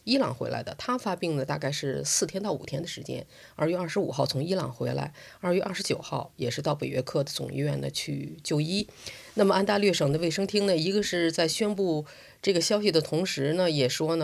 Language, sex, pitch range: Chinese, female, 140-180 Hz